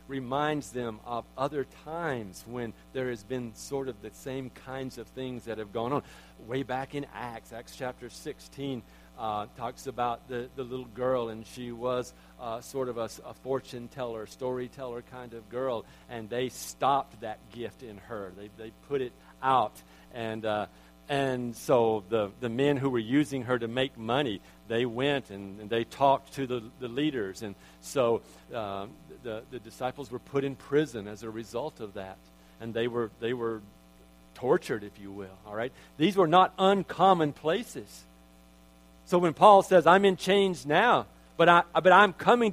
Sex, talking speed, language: male, 180 wpm, English